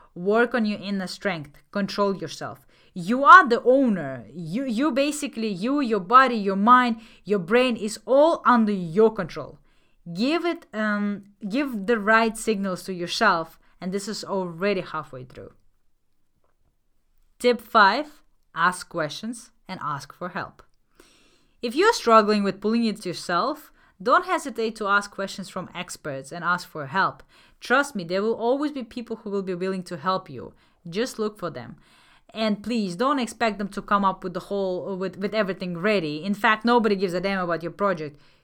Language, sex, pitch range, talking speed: English, female, 180-235 Hz, 170 wpm